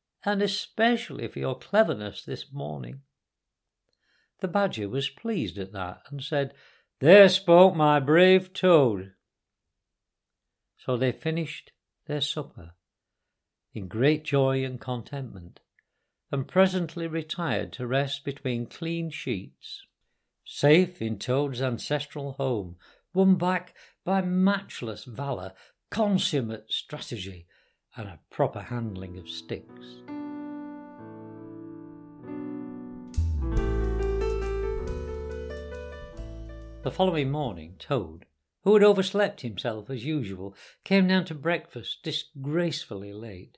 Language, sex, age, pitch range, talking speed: English, male, 60-79, 110-170 Hz, 100 wpm